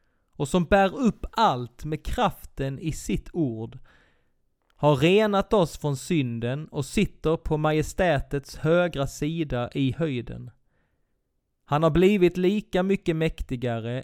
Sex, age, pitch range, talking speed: male, 30-49, 125-175 Hz, 125 wpm